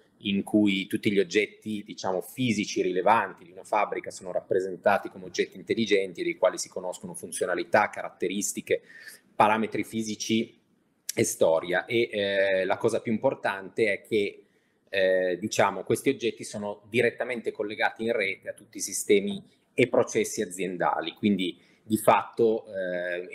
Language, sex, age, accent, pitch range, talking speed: Italian, male, 30-49, native, 100-145 Hz, 140 wpm